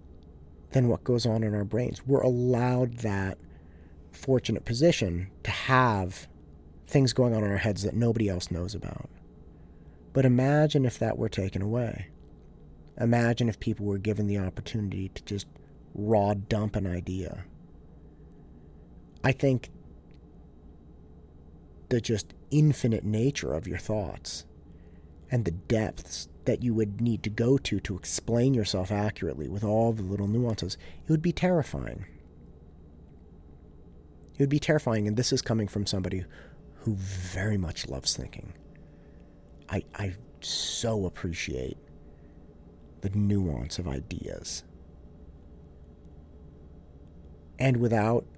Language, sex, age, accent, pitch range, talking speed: English, male, 40-59, American, 80-110 Hz, 125 wpm